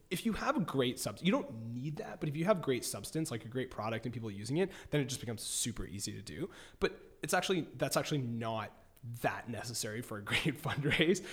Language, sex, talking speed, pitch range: English, male, 235 wpm, 115-160 Hz